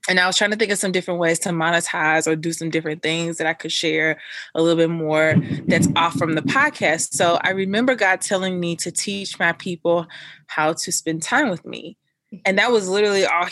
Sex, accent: female, American